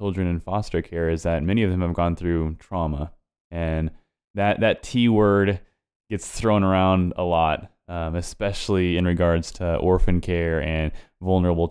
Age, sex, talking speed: 20-39, male, 165 wpm